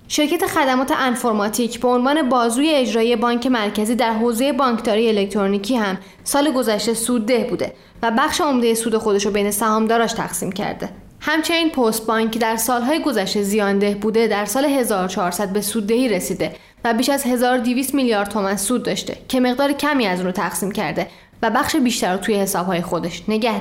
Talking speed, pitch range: 165 wpm, 205-250 Hz